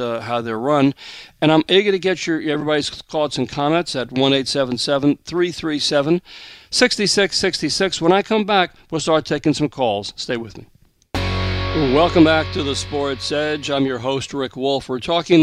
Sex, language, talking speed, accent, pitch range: male, English, 165 wpm, American, 125-155 Hz